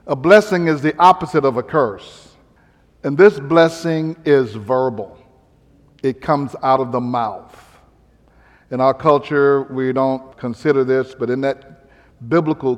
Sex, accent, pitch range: male, American, 130-170 Hz